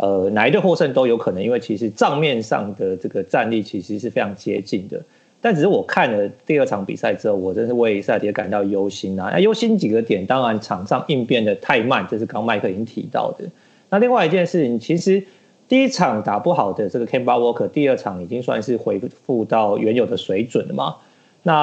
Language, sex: Chinese, male